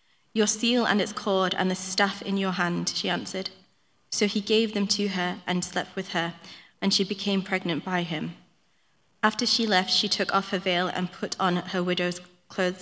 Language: English